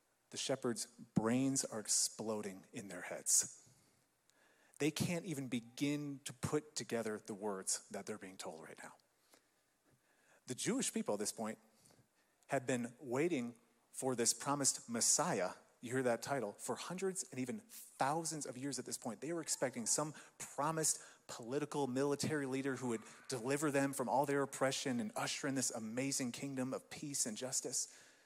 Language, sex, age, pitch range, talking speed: English, male, 30-49, 125-170 Hz, 160 wpm